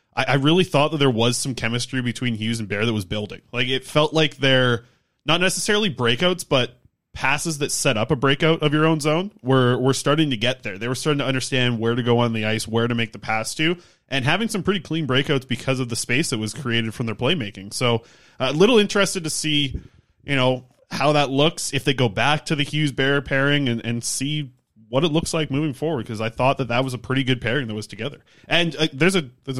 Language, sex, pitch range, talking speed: English, male, 115-150 Hz, 245 wpm